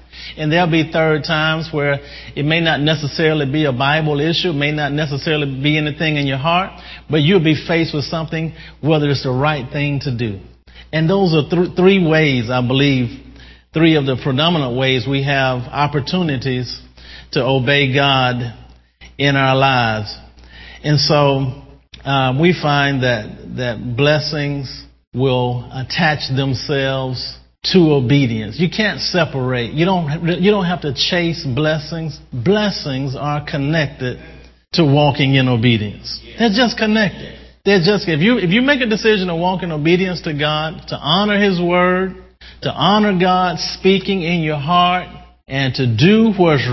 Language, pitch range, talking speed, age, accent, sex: English, 135-175 Hz, 155 wpm, 50-69, American, male